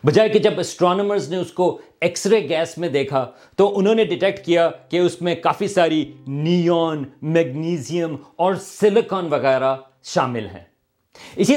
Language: Urdu